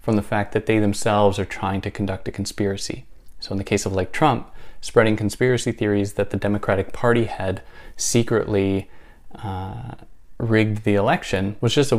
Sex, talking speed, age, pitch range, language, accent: male, 175 wpm, 20-39, 95-115 Hz, English, American